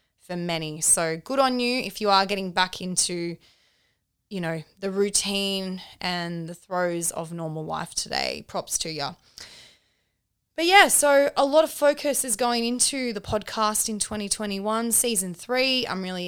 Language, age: English, 20-39